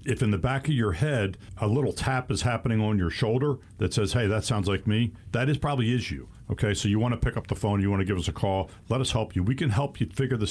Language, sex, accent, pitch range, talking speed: English, male, American, 100-120 Hz, 305 wpm